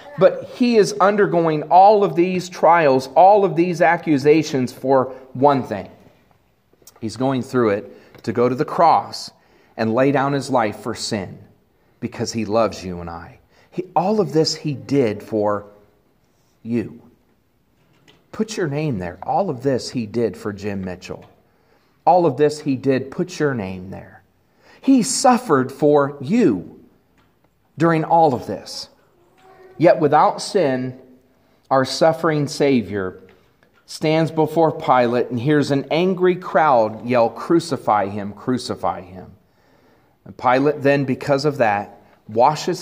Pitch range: 110-155 Hz